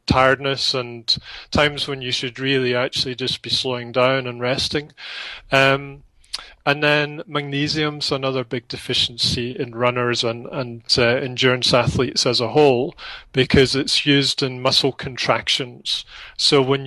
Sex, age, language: male, 30-49, English